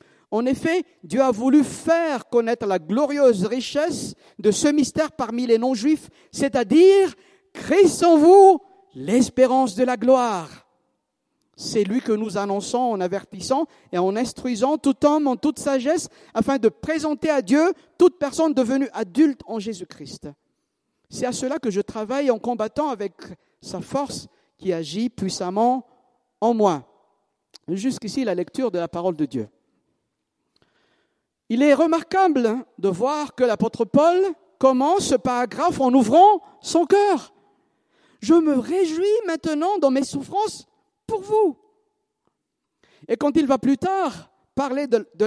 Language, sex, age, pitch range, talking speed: French, male, 50-69, 225-325 Hz, 140 wpm